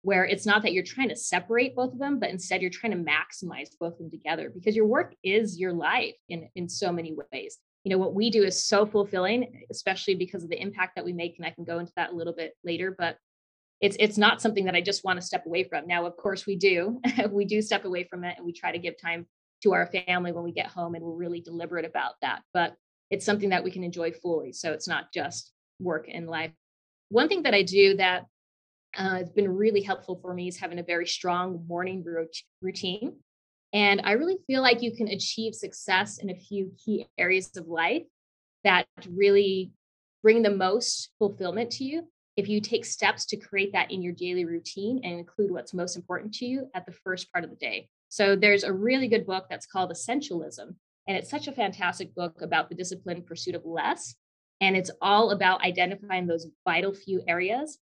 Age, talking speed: 20-39, 225 wpm